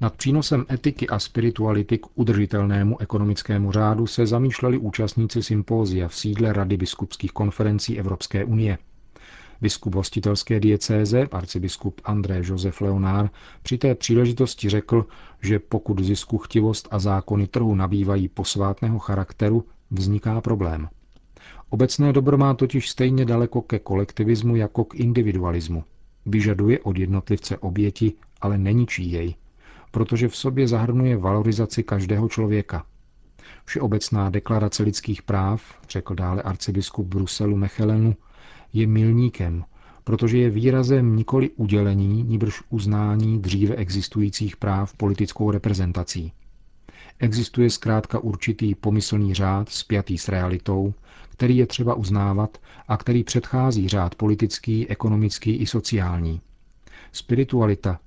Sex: male